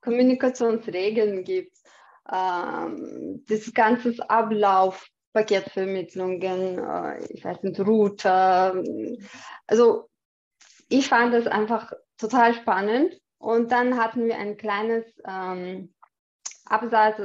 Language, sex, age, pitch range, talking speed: English, female, 20-39, 200-245 Hz, 95 wpm